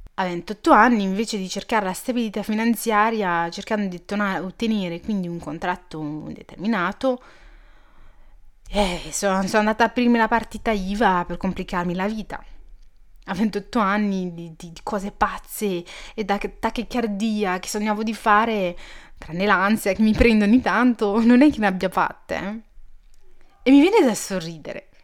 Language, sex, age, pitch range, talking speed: Italian, female, 30-49, 185-225 Hz, 150 wpm